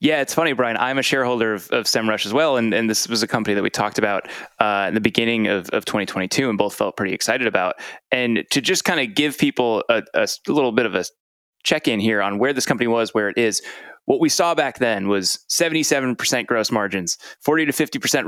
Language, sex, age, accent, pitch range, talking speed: English, male, 20-39, American, 110-135 Hz, 235 wpm